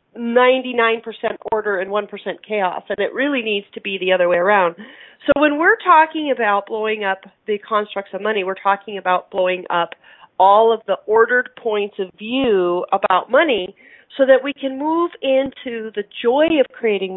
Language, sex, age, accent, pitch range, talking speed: English, female, 40-59, American, 195-250 Hz, 170 wpm